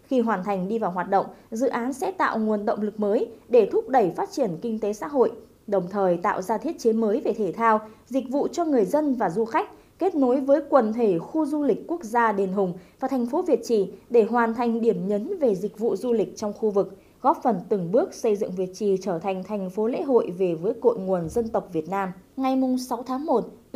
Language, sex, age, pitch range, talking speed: Vietnamese, female, 20-39, 195-245 Hz, 240 wpm